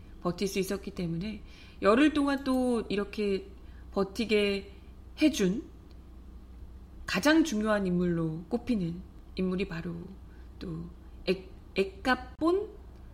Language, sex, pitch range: Korean, female, 165-240 Hz